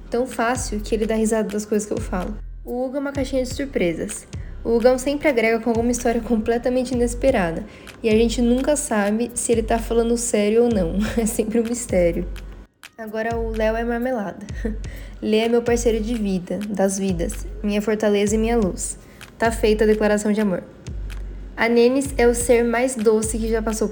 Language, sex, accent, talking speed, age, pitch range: Portuguese, female, Brazilian, 195 wpm, 10-29, 210-240 Hz